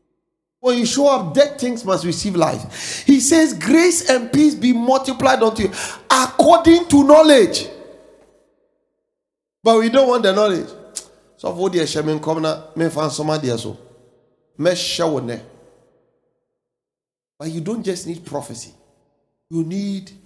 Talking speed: 105 wpm